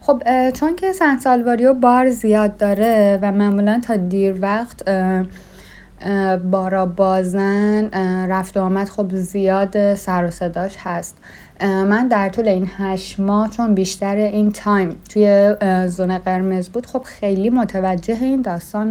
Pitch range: 190-235 Hz